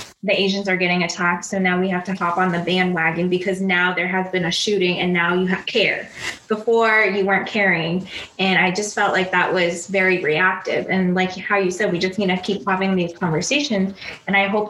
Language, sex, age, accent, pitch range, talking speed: English, female, 20-39, American, 180-205 Hz, 225 wpm